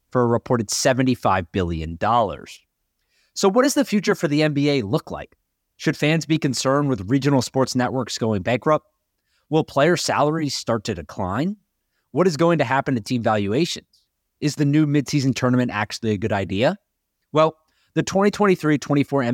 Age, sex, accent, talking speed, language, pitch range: 30-49, male, American, 160 wpm, English, 115-155 Hz